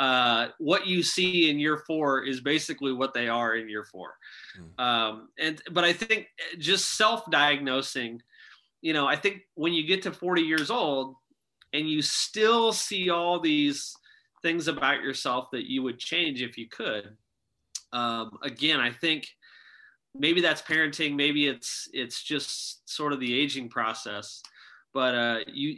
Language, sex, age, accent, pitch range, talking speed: English, male, 30-49, American, 125-170 Hz, 160 wpm